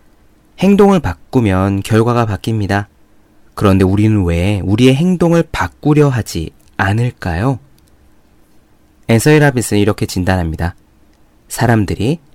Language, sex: Korean, male